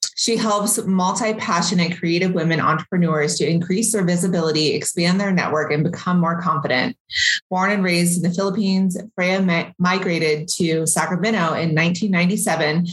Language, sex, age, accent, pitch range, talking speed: English, female, 30-49, American, 170-205 Hz, 135 wpm